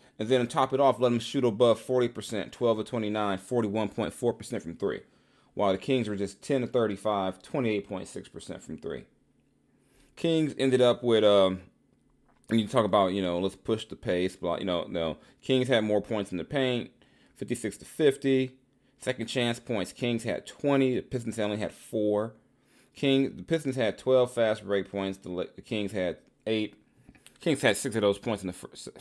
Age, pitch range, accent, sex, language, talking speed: 30-49, 100-130 Hz, American, male, English, 185 wpm